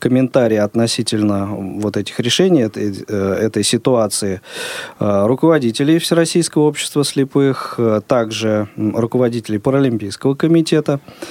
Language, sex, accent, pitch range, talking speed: Russian, male, native, 110-135 Hz, 85 wpm